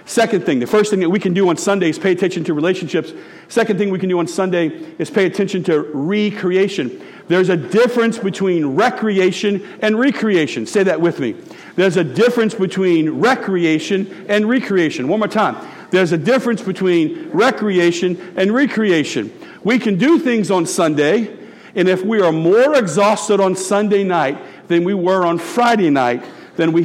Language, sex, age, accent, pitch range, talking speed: English, male, 50-69, American, 175-215 Hz, 175 wpm